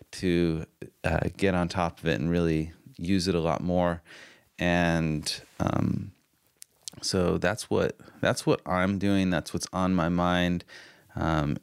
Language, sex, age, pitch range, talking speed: English, male, 30-49, 90-110 Hz, 150 wpm